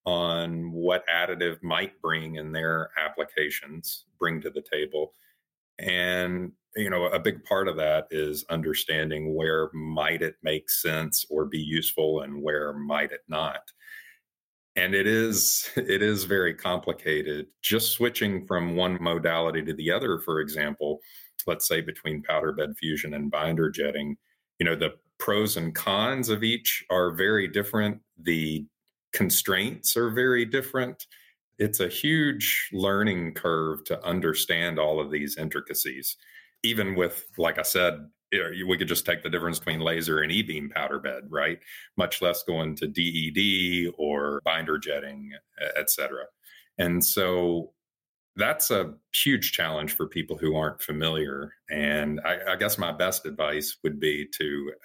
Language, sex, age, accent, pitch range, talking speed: English, male, 40-59, American, 75-95 Hz, 150 wpm